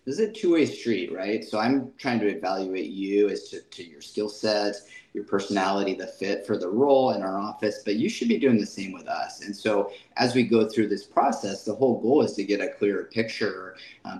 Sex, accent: male, American